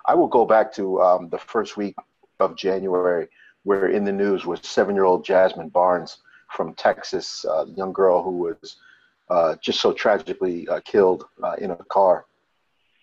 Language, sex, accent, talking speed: English, male, American, 170 wpm